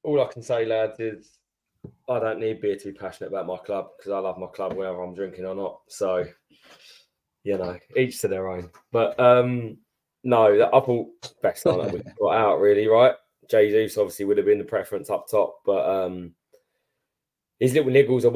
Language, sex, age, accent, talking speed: English, male, 20-39, British, 205 wpm